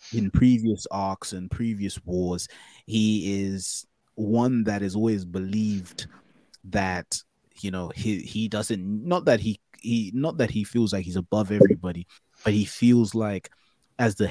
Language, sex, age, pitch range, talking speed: English, male, 20-39, 95-115 Hz, 155 wpm